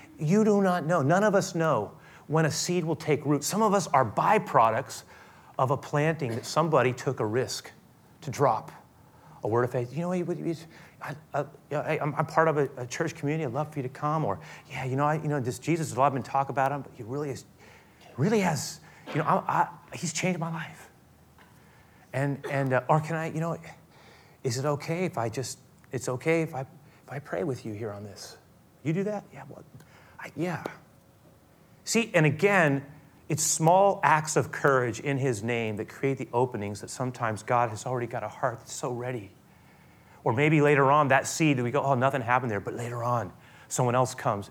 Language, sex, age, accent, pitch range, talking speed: English, male, 30-49, American, 125-160 Hz, 205 wpm